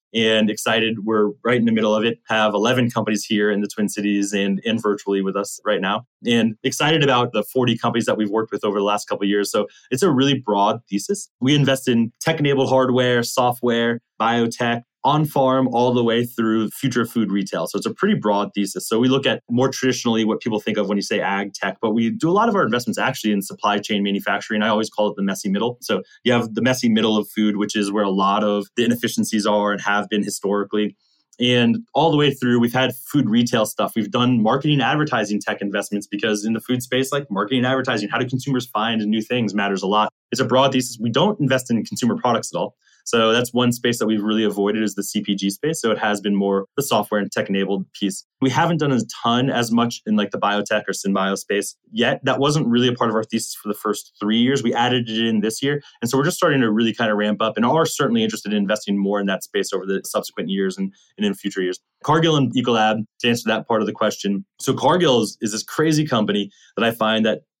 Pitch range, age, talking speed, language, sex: 105-125 Hz, 20-39, 245 wpm, English, male